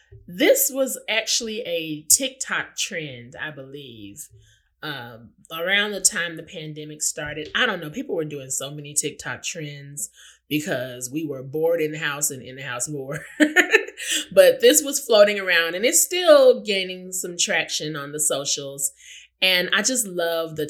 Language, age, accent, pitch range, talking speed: English, 20-39, American, 145-200 Hz, 155 wpm